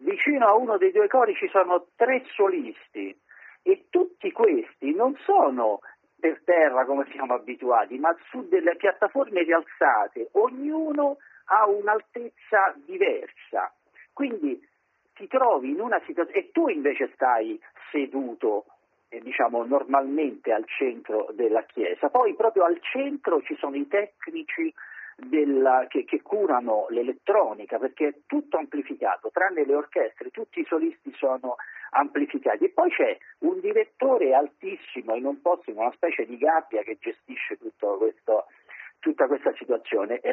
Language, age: Italian, 50-69